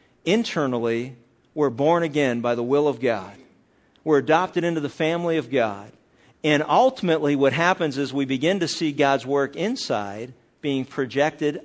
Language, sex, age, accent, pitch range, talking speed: English, male, 50-69, American, 140-175 Hz, 155 wpm